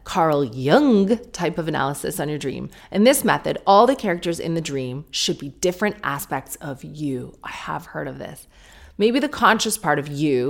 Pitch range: 140-195 Hz